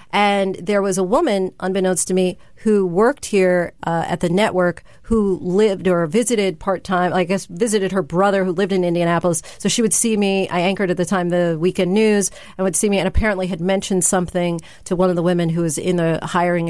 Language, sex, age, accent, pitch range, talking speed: English, female, 40-59, American, 175-200 Hz, 220 wpm